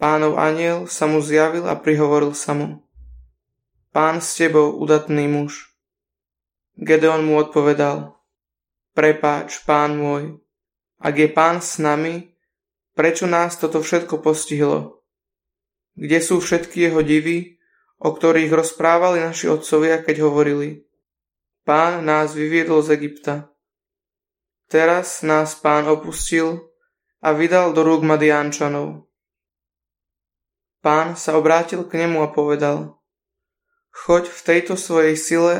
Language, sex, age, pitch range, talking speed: Slovak, male, 20-39, 150-170 Hz, 115 wpm